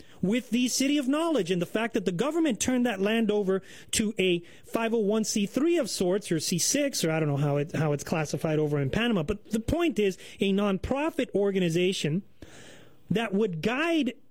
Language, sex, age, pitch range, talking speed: English, male, 30-49, 180-250 Hz, 185 wpm